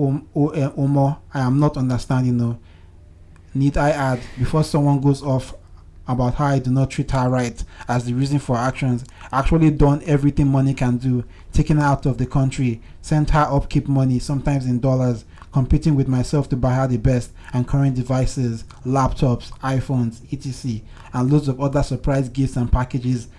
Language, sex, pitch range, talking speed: English, male, 120-140 Hz, 170 wpm